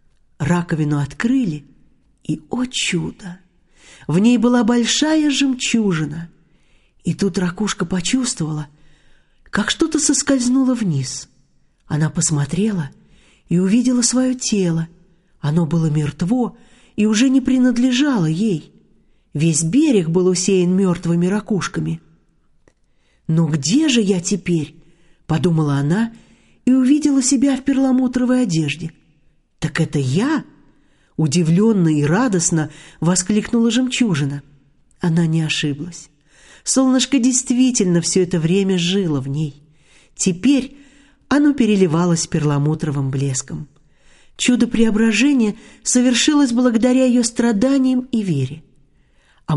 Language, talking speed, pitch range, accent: Russian, 100 wpm, 160-245 Hz, native